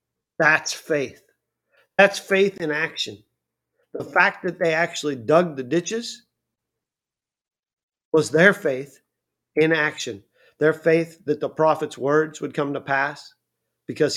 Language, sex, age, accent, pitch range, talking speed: English, male, 50-69, American, 135-170 Hz, 125 wpm